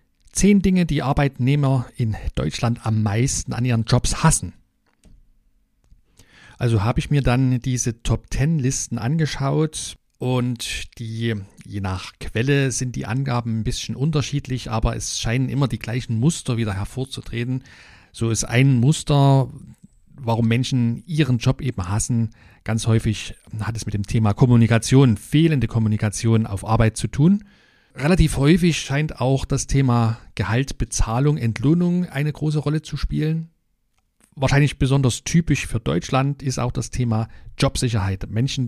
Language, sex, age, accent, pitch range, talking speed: German, male, 40-59, German, 110-140 Hz, 140 wpm